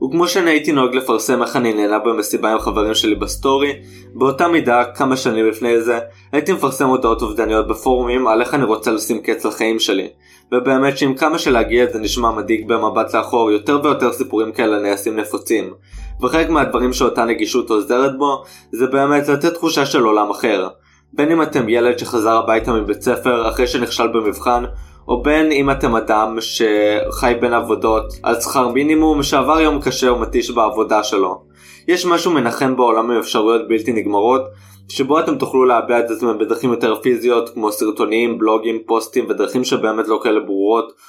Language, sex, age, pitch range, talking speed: Hebrew, male, 20-39, 110-135 Hz, 165 wpm